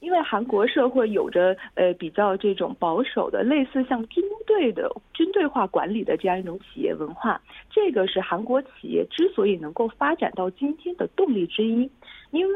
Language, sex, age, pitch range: Korean, female, 50-69, 185-275 Hz